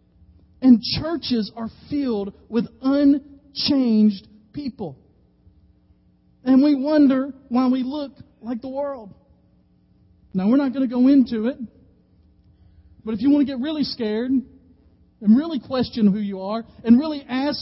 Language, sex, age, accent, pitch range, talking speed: English, male, 40-59, American, 215-285 Hz, 140 wpm